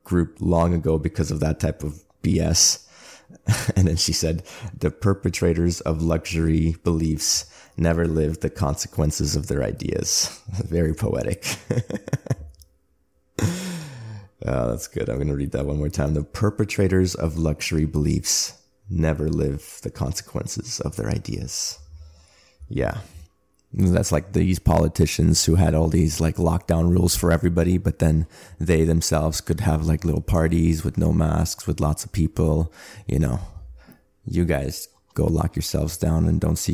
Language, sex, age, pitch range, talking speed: English, male, 30-49, 80-90 Hz, 150 wpm